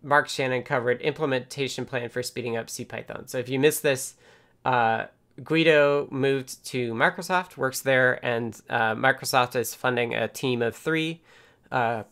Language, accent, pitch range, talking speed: English, American, 120-150 Hz, 160 wpm